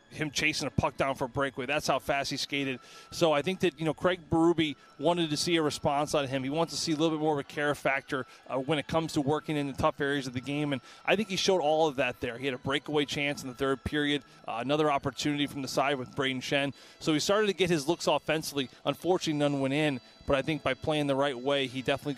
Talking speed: 275 wpm